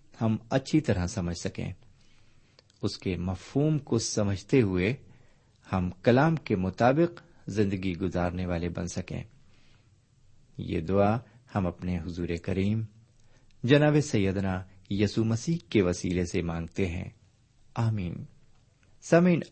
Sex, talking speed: male, 110 wpm